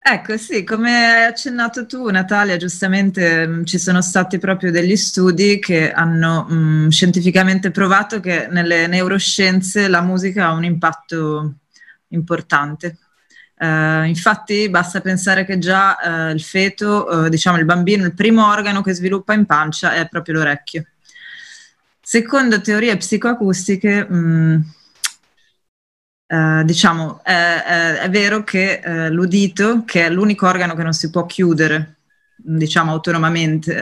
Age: 20-39